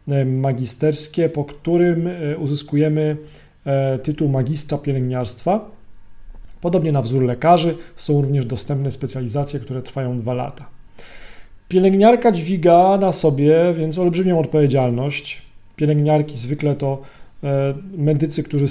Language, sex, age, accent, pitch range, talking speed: Polish, male, 40-59, native, 135-160 Hz, 100 wpm